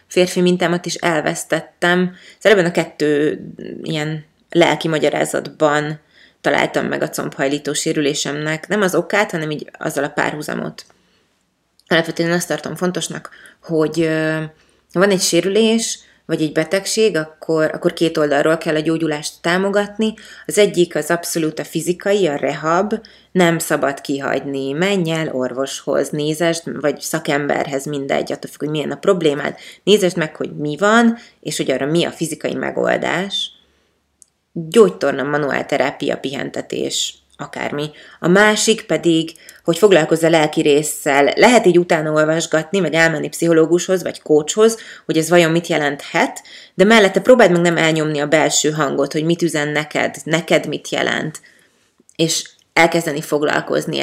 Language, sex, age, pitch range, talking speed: Hungarian, female, 30-49, 150-175 Hz, 140 wpm